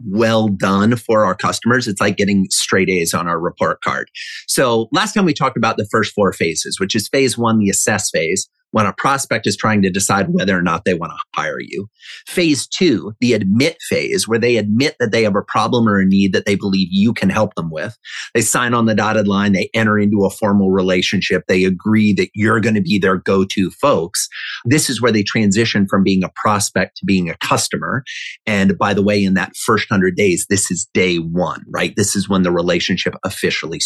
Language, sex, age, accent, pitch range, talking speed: English, male, 30-49, American, 95-115 Hz, 220 wpm